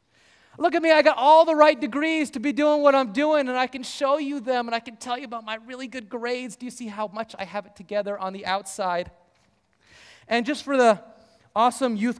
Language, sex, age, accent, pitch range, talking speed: English, male, 30-49, American, 195-255 Hz, 240 wpm